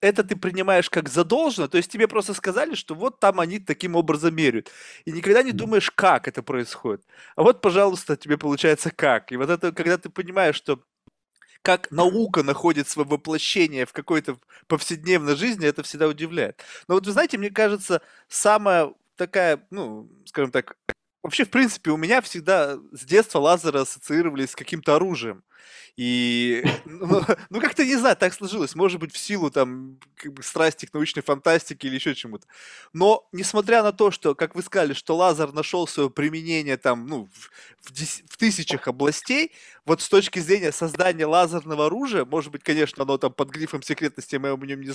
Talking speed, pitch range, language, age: 180 wpm, 150-195 Hz, Russian, 20-39